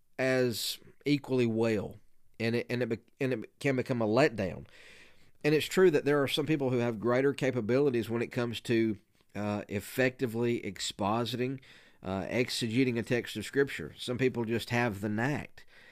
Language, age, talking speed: English, 50-69, 170 wpm